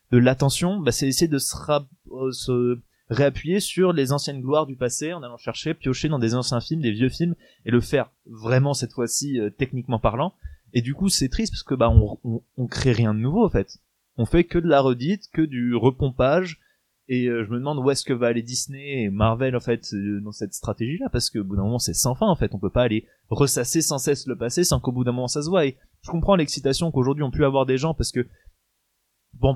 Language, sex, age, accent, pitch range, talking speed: French, male, 20-39, French, 120-145 Hz, 250 wpm